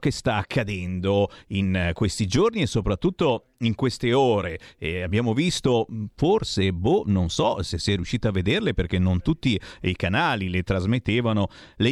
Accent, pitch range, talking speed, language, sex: native, 110-145 Hz, 155 wpm, Italian, male